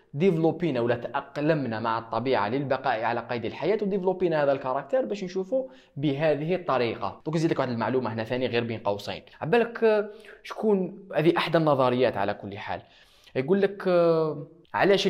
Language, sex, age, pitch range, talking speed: Arabic, male, 20-39, 120-175 Hz, 145 wpm